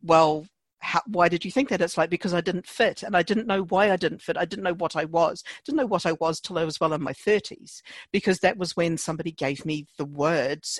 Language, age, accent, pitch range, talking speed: English, 50-69, British, 155-185 Hz, 300 wpm